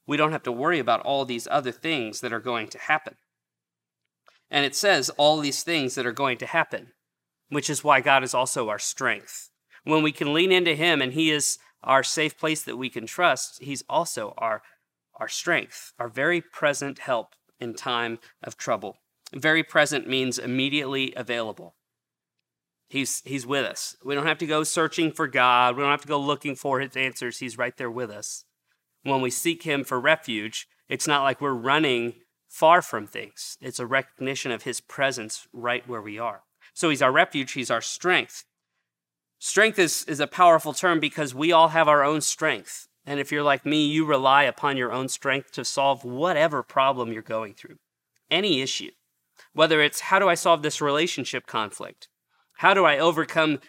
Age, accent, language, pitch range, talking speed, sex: 40-59, American, English, 125-155 Hz, 190 wpm, male